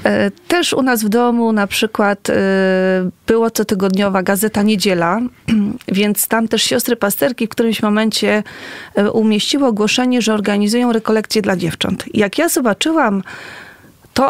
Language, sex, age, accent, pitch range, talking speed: Polish, female, 30-49, native, 195-245 Hz, 125 wpm